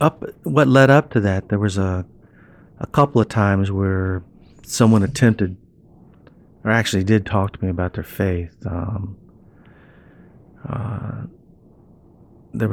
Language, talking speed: English, 130 wpm